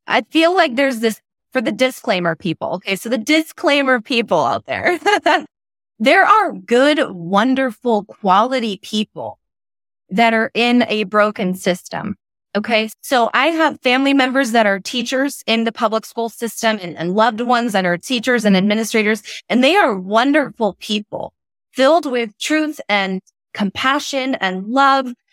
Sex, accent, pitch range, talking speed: female, American, 200-260 Hz, 150 wpm